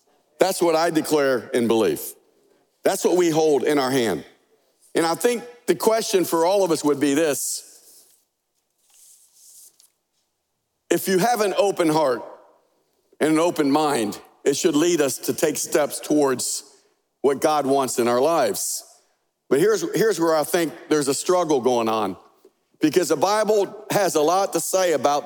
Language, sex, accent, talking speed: English, male, American, 165 wpm